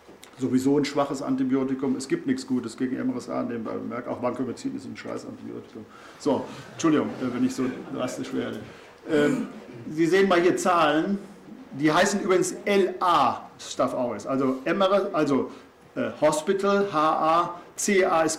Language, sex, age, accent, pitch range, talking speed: German, male, 50-69, German, 135-185 Hz, 145 wpm